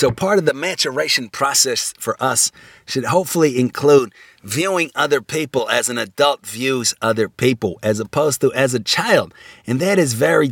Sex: male